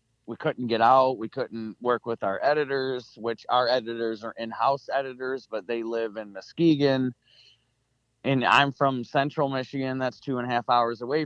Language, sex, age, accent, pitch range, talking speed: English, male, 30-49, American, 115-130 Hz, 175 wpm